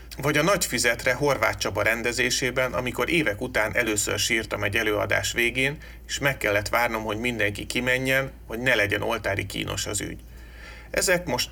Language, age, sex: Hungarian, 30-49, male